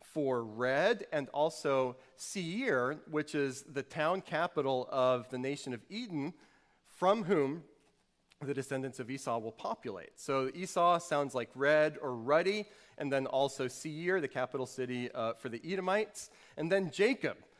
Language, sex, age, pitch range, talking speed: English, male, 30-49, 135-190 Hz, 150 wpm